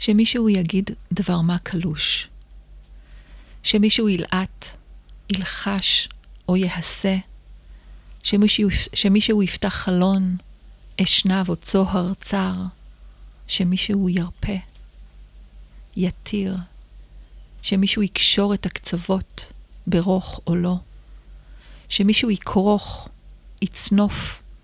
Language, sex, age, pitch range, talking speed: Hebrew, female, 40-59, 175-205 Hz, 75 wpm